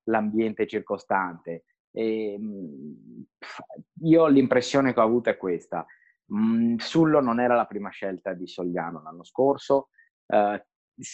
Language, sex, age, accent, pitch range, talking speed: Italian, male, 30-49, native, 110-165 Hz, 120 wpm